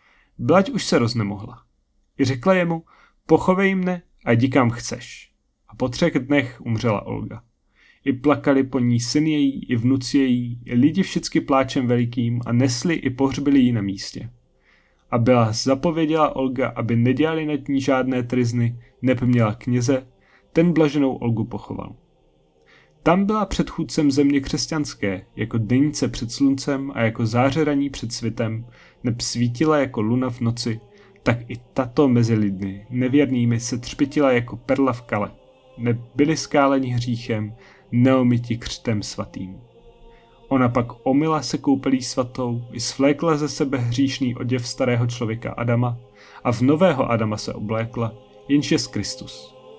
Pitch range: 115-140 Hz